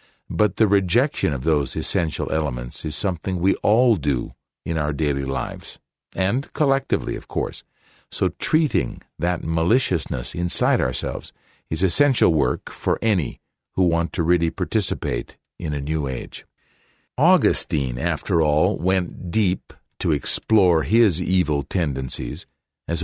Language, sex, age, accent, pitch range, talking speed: English, male, 50-69, American, 75-100 Hz, 135 wpm